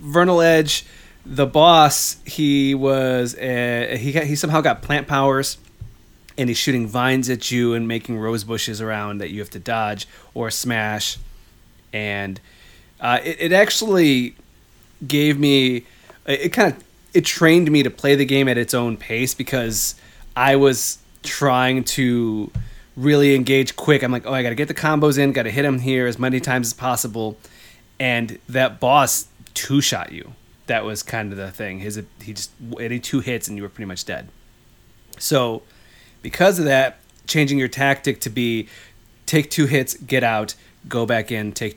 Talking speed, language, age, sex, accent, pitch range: 170 wpm, English, 20-39, male, American, 110-135 Hz